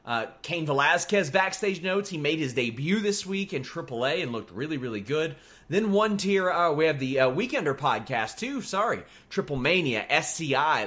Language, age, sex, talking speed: English, 30-49, male, 180 wpm